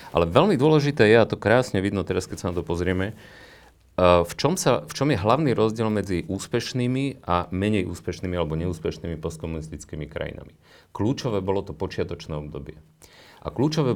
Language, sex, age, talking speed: Slovak, male, 40-59, 155 wpm